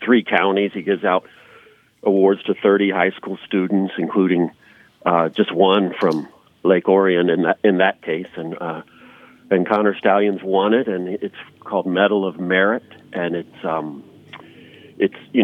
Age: 50-69